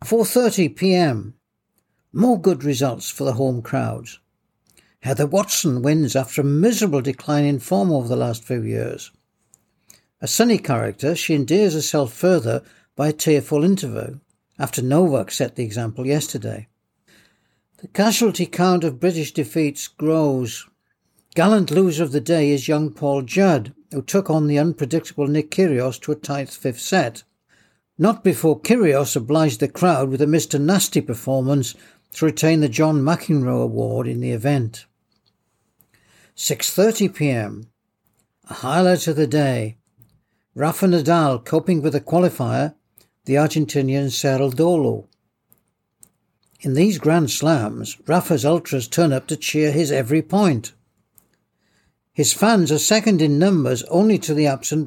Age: 60-79